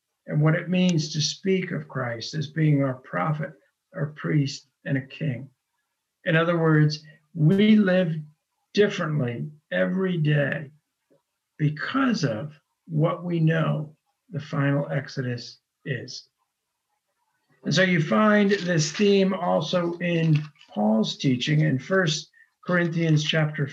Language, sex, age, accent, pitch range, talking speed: English, male, 60-79, American, 145-185 Hz, 120 wpm